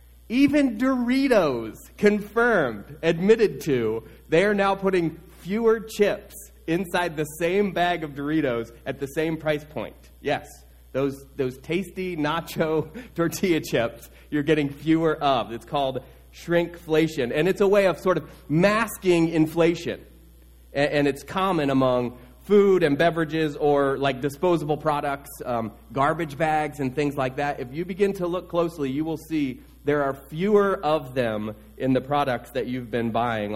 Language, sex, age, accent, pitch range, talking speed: English, male, 30-49, American, 125-175 Hz, 150 wpm